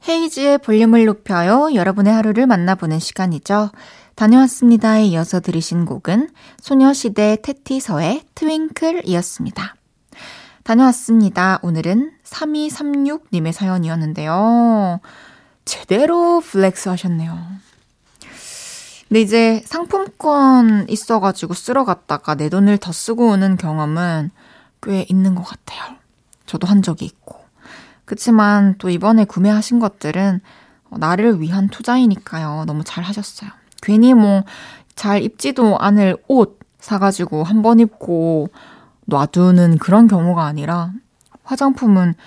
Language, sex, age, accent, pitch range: Korean, female, 20-39, native, 180-235 Hz